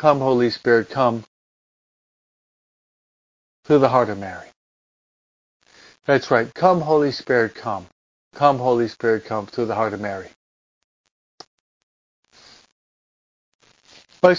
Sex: male